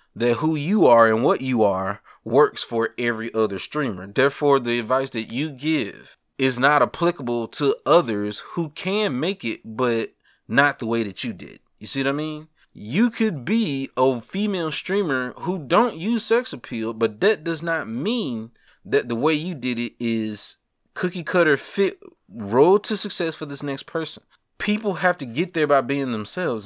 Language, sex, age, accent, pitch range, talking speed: English, male, 30-49, American, 120-165 Hz, 180 wpm